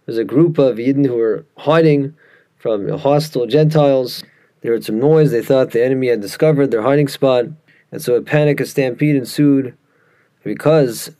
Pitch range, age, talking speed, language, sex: 120-150 Hz, 20-39, 170 wpm, English, male